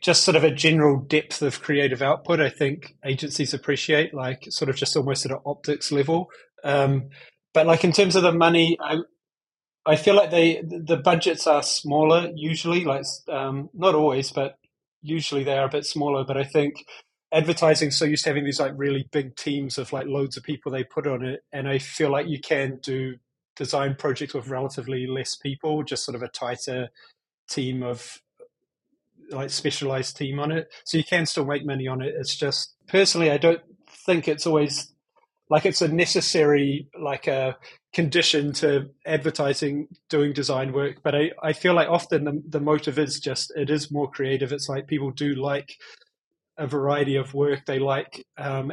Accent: British